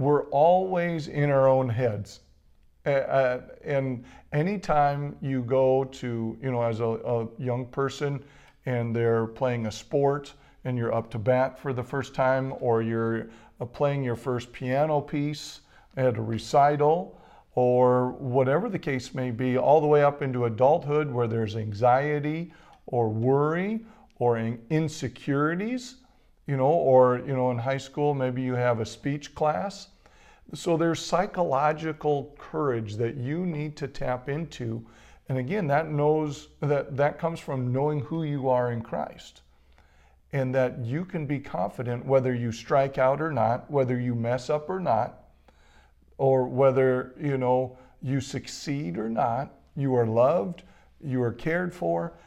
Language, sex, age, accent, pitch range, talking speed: English, male, 50-69, American, 120-150 Hz, 150 wpm